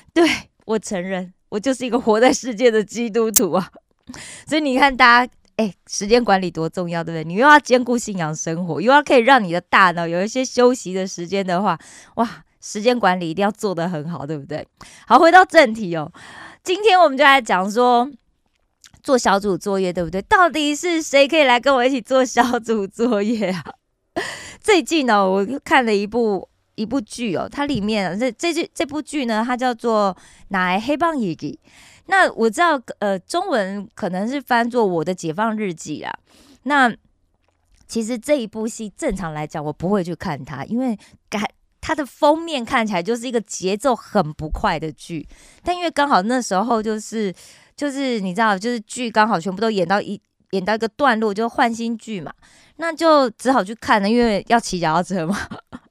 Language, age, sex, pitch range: Korean, 20-39, female, 190-260 Hz